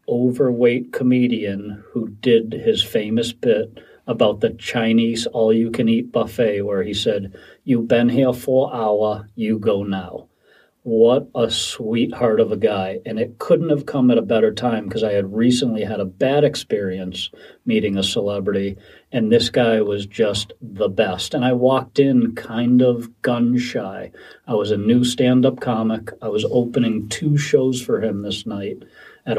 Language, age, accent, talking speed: English, 40-59, American, 165 wpm